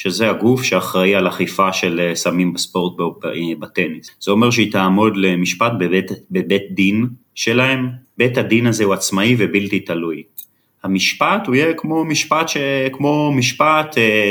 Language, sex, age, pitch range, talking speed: Hebrew, male, 30-49, 95-130 Hz, 145 wpm